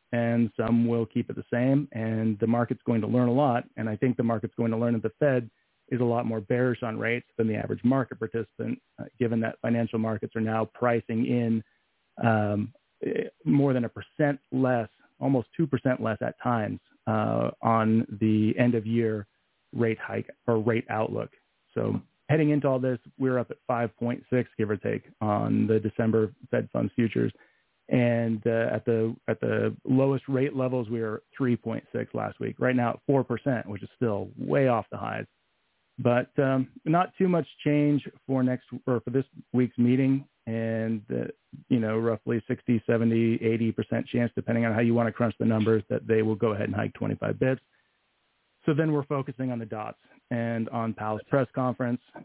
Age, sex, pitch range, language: 30-49, male, 110-130 Hz, English